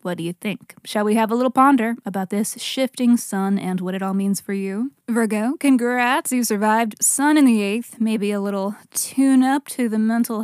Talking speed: 205 wpm